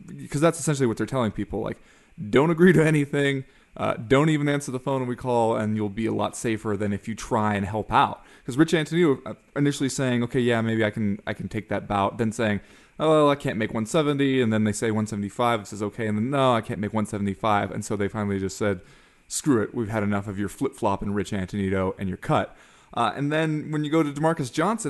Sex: male